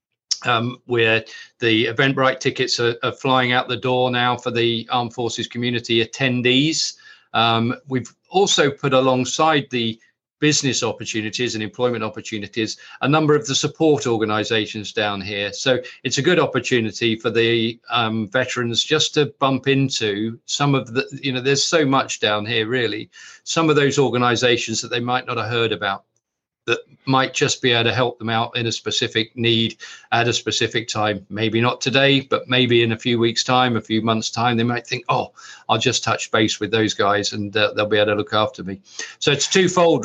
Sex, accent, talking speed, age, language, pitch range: male, British, 190 wpm, 40-59, English, 110-130 Hz